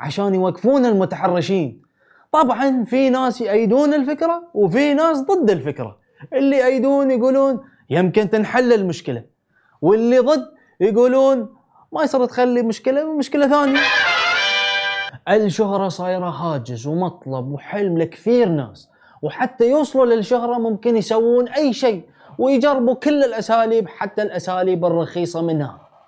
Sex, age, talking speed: male, 20-39, 110 wpm